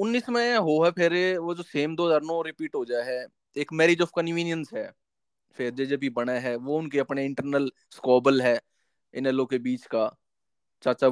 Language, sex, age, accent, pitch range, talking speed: Hindi, male, 20-39, native, 130-195 Hz, 180 wpm